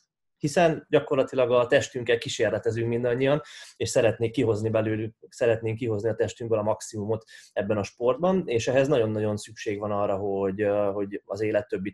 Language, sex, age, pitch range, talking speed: Hungarian, male, 20-39, 105-135 Hz, 145 wpm